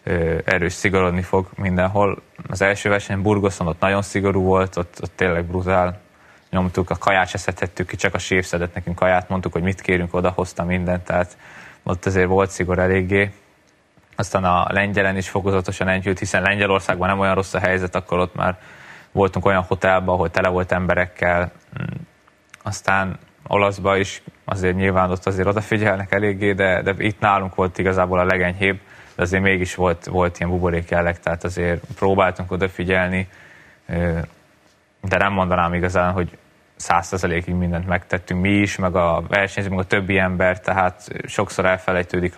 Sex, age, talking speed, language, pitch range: male, 20-39, 155 wpm, Hungarian, 90-95 Hz